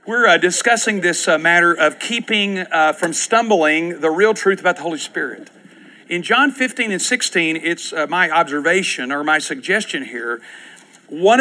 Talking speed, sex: 170 wpm, male